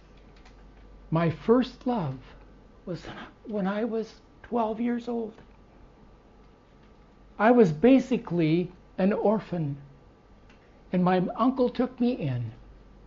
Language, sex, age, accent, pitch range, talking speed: English, male, 60-79, American, 170-225 Hz, 95 wpm